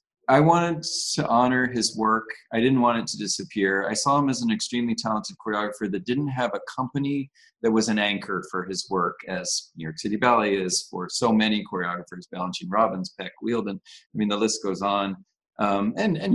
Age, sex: 40-59, male